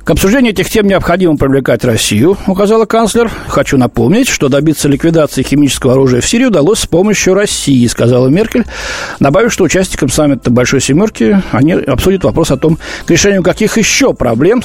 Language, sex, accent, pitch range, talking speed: Russian, male, native, 130-195 Hz, 165 wpm